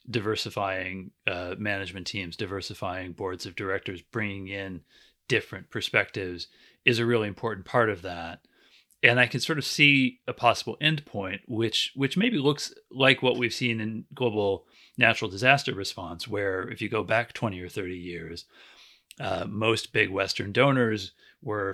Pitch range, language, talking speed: 95-120 Hz, English, 155 wpm